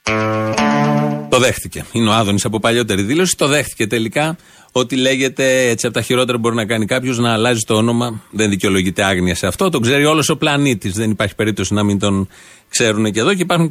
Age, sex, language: 40-59, male, Greek